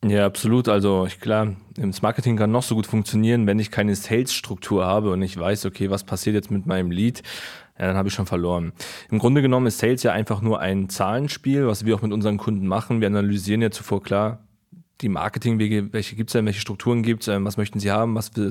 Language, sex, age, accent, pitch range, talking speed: German, male, 20-39, German, 105-125 Hz, 215 wpm